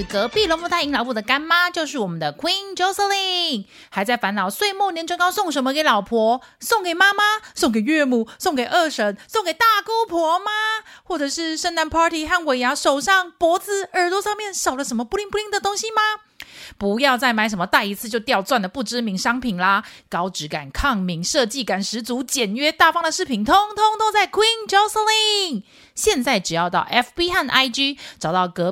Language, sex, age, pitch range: Chinese, female, 30-49, 230-360 Hz